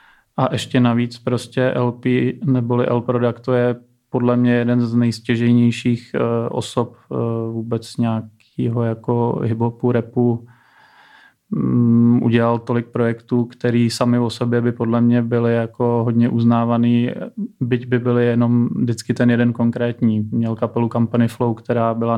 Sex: male